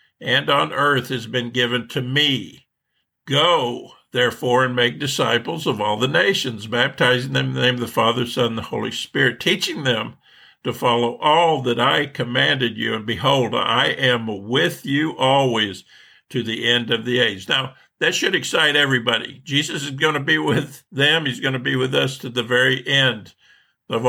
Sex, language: male, English